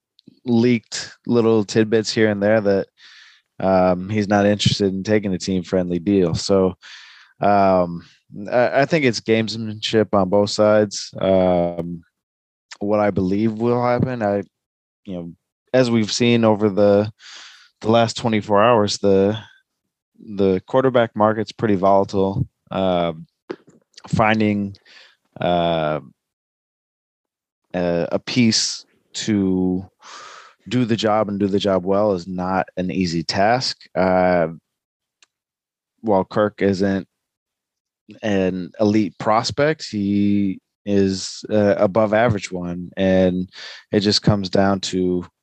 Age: 20-39